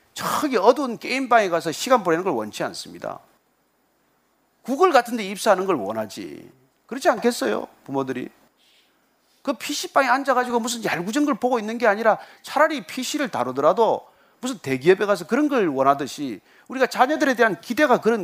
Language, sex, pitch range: Korean, male, 190-275 Hz